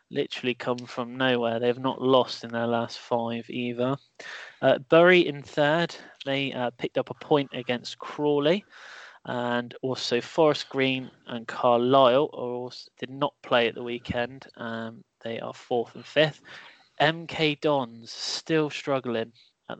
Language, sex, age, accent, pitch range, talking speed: English, male, 20-39, British, 120-135 Hz, 145 wpm